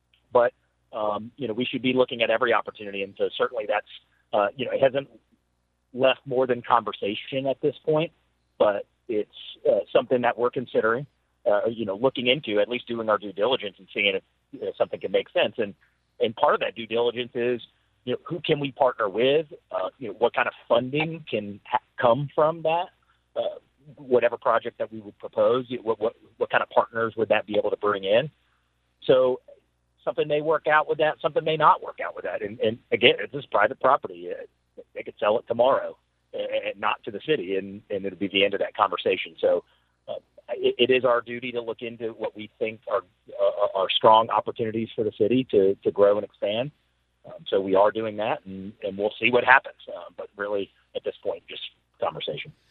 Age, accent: 40-59, American